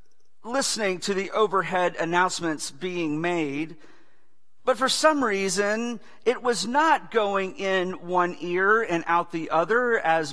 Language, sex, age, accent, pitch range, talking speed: English, male, 50-69, American, 165-235 Hz, 135 wpm